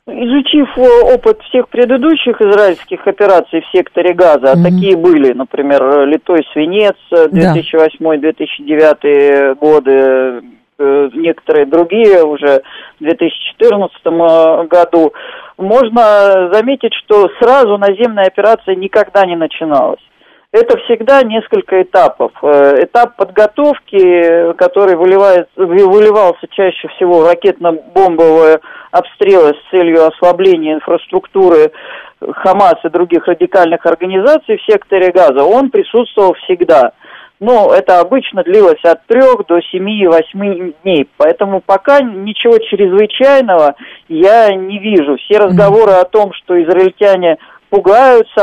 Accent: native